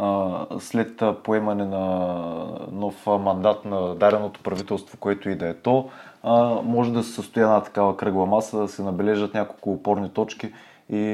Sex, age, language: male, 20-39, Bulgarian